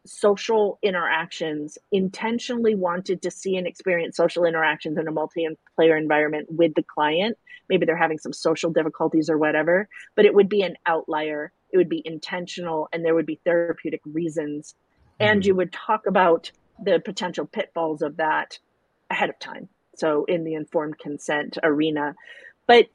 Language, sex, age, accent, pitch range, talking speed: English, female, 40-59, American, 165-200 Hz, 160 wpm